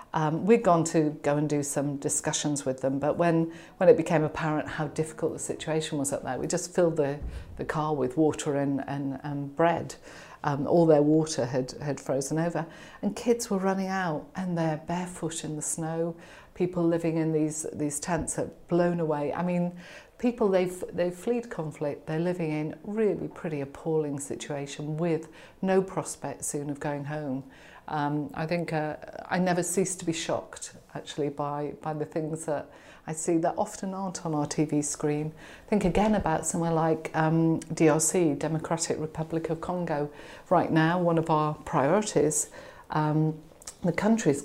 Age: 50-69